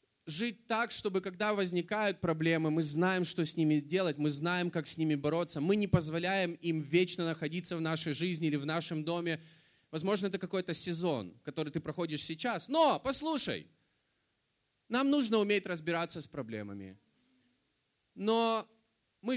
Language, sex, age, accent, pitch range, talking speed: Russian, male, 20-39, native, 150-185 Hz, 150 wpm